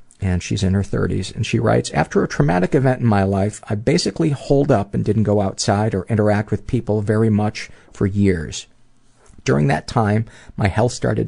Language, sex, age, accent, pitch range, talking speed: English, male, 40-59, American, 100-115 Hz, 195 wpm